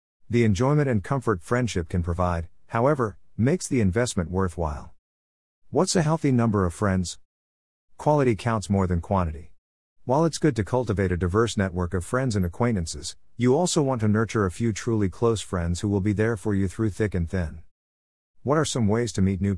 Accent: American